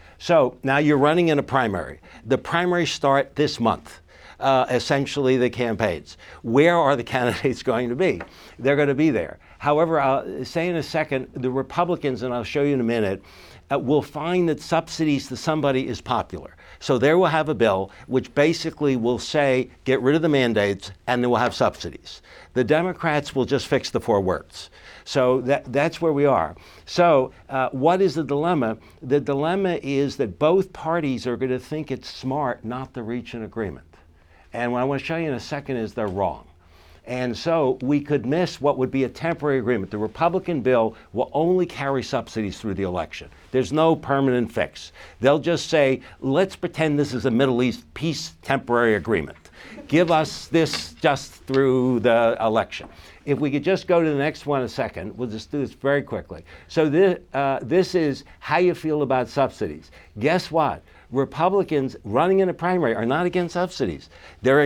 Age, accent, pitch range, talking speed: 60-79, American, 120-155 Hz, 190 wpm